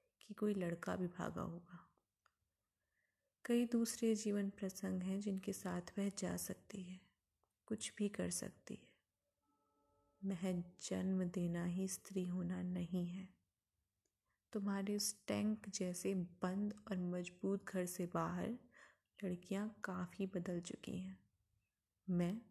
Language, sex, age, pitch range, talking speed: Hindi, female, 20-39, 175-205 Hz, 115 wpm